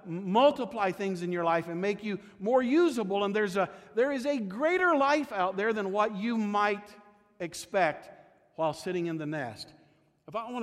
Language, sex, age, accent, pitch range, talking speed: English, male, 50-69, American, 135-180 Hz, 185 wpm